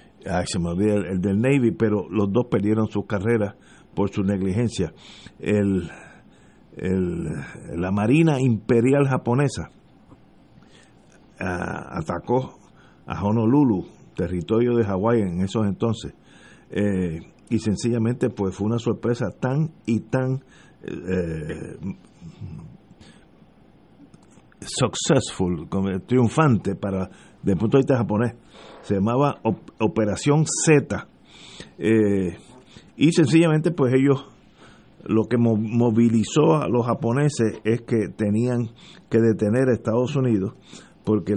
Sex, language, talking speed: male, Spanish, 110 wpm